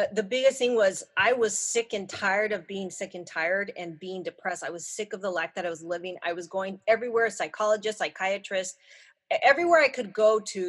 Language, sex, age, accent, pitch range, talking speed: English, female, 30-49, American, 180-220 Hz, 215 wpm